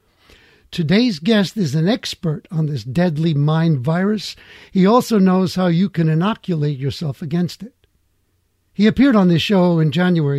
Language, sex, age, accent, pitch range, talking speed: English, male, 60-79, American, 150-195 Hz, 155 wpm